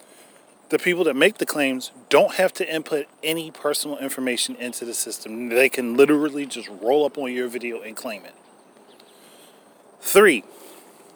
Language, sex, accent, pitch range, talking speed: English, male, American, 125-155 Hz, 155 wpm